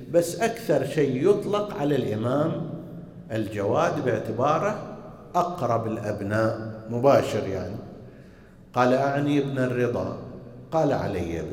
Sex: male